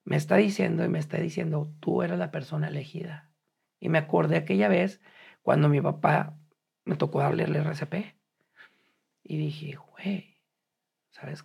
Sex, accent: male, Mexican